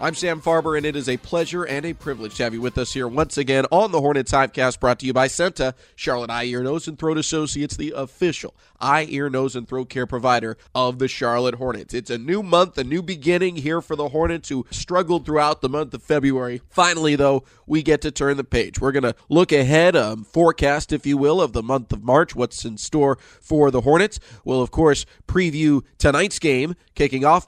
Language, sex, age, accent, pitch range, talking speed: English, male, 30-49, American, 120-150 Hz, 225 wpm